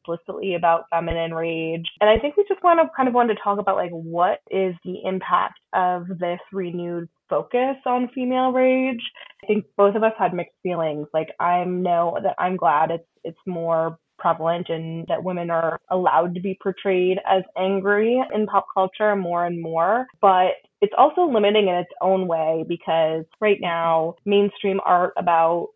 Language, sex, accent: English, female, American